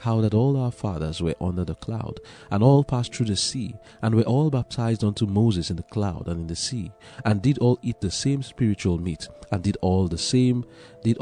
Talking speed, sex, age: 225 wpm, male, 40-59